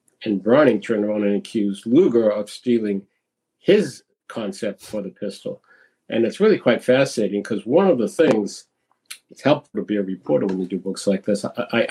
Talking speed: 180 wpm